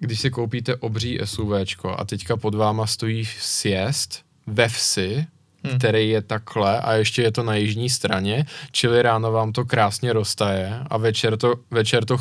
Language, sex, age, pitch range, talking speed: Czech, male, 20-39, 110-125 Hz, 160 wpm